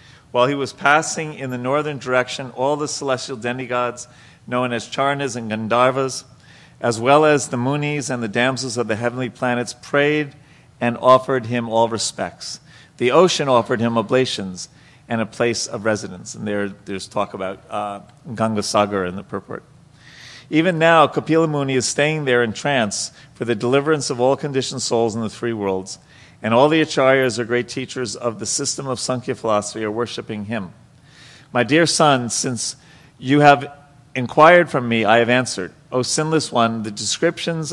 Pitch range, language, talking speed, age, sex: 115-145 Hz, English, 175 wpm, 40-59, male